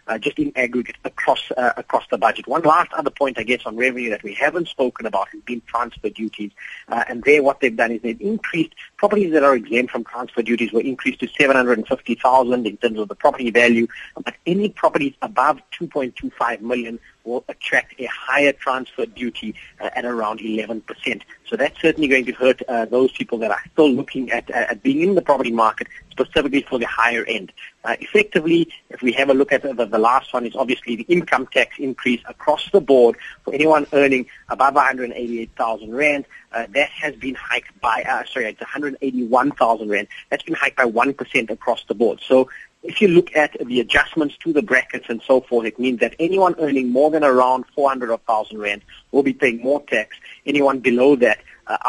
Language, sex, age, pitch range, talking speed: English, male, 30-49, 120-145 Hz, 200 wpm